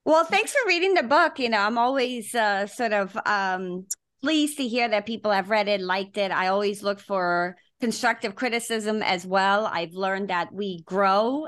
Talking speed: 195 wpm